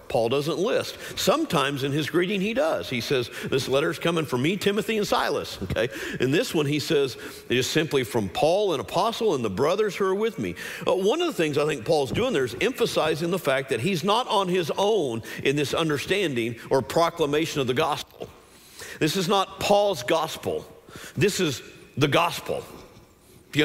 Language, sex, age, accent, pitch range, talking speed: English, male, 50-69, American, 140-205 Hz, 195 wpm